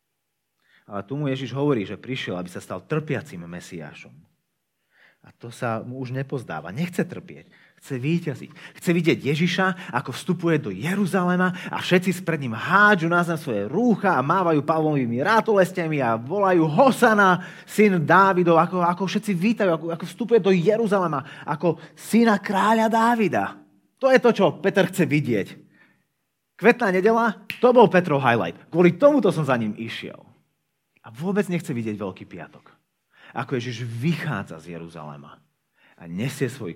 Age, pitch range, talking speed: 30-49, 125-185 Hz, 150 wpm